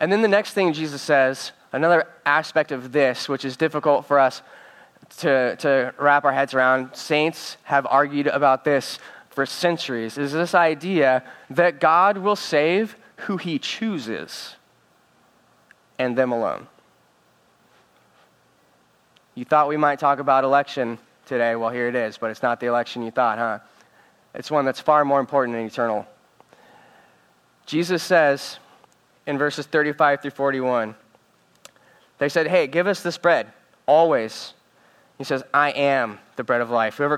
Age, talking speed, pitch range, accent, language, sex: 30-49, 150 wpm, 130-165 Hz, American, English, male